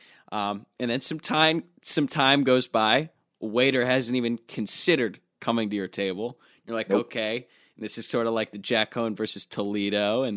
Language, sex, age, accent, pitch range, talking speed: English, male, 20-39, American, 105-130 Hz, 190 wpm